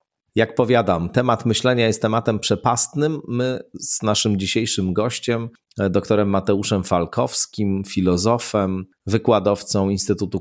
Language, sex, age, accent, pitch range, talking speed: Polish, male, 40-59, native, 90-115 Hz, 105 wpm